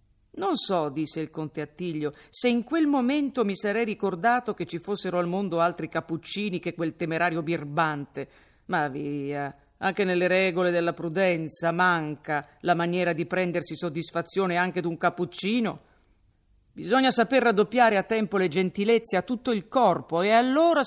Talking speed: 150 wpm